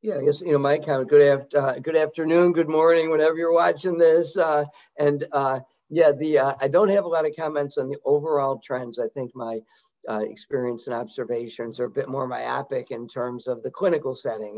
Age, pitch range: 50-69, 125-155 Hz